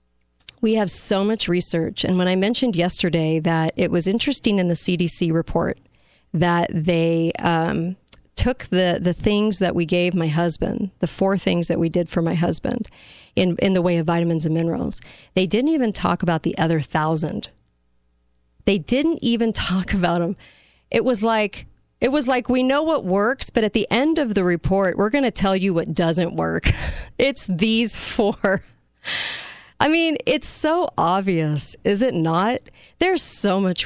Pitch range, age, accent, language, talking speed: 165-200 Hz, 40-59, American, English, 175 wpm